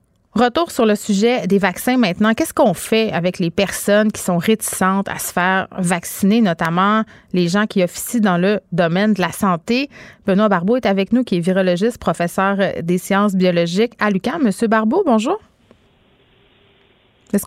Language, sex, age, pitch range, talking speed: French, female, 30-49, 190-235 Hz, 170 wpm